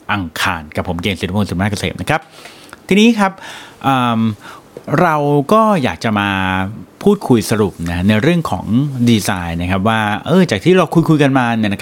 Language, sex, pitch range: Thai, male, 100-145 Hz